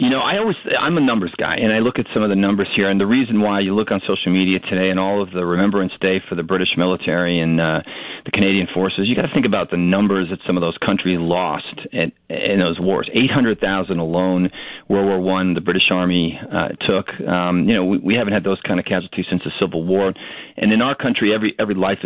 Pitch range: 90-100 Hz